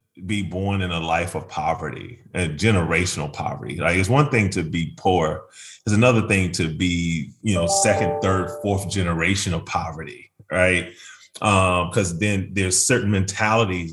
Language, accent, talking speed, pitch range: English, American, 160 wpm, 85-105 Hz